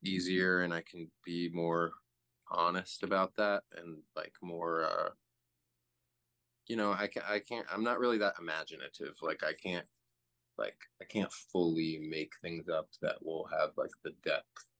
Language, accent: English, American